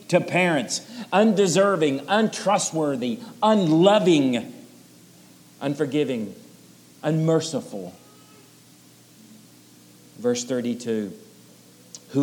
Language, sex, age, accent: English, male, 50-69, American